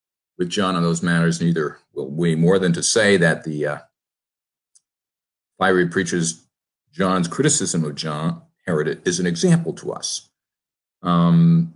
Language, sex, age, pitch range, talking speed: English, male, 50-69, 80-95 Hz, 145 wpm